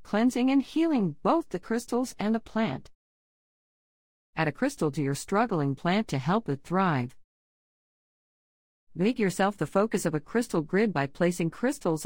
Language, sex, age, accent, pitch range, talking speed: English, female, 50-69, American, 140-205 Hz, 155 wpm